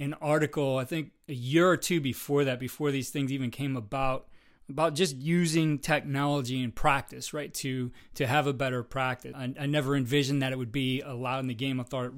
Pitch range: 130-155 Hz